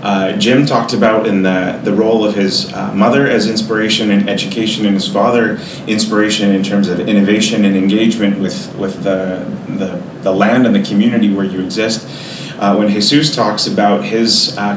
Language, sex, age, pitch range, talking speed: English, male, 30-49, 100-110 Hz, 185 wpm